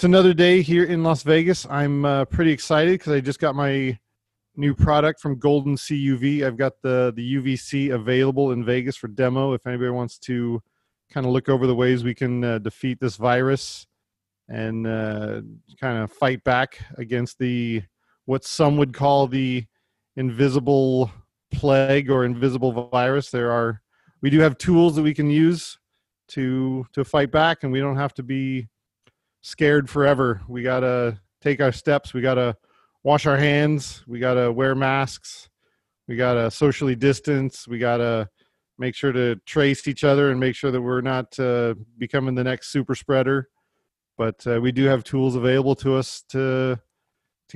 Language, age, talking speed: English, 40-59, 170 wpm